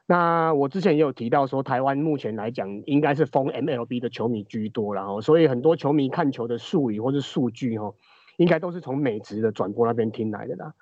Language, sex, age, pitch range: Chinese, male, 30-49, 115-150 Hz